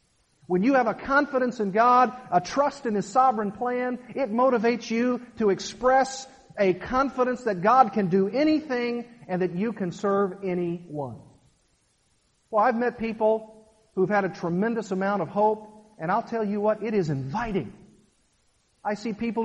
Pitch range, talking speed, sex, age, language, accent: 195-255 Hz, 165 wpm, male, 50-69, English, American